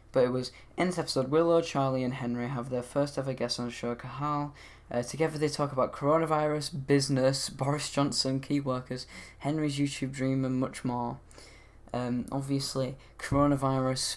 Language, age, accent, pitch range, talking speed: English, 10-29, British, 120-140 Hz, 165 wpm